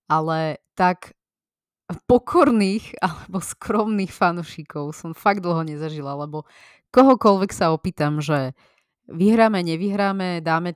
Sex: female